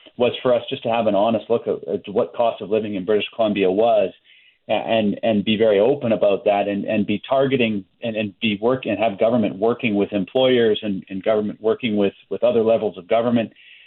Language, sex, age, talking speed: English, male, 40-59, 215 wpm